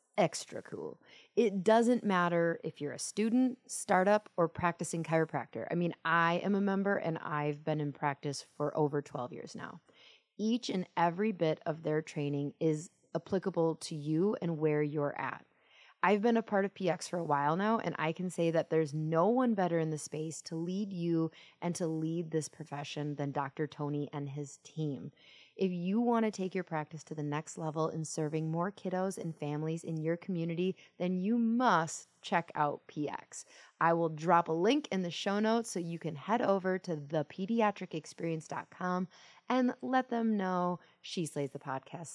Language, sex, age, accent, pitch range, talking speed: English, female, 30-49, American, 155-200 Hz, 185 wpm